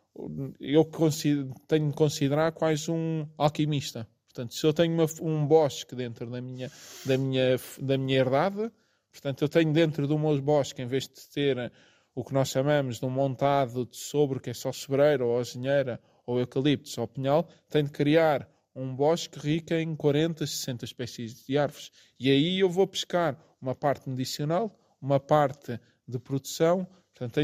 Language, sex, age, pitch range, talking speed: Portuguese, male, 20-39, 135-160 Hz, 170 wpm